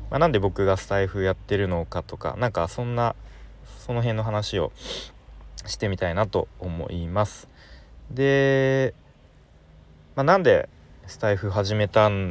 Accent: native